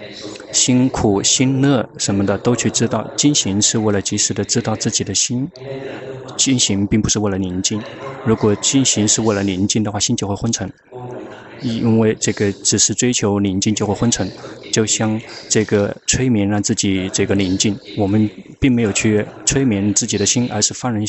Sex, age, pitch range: male, 20-39, 105-130 Hz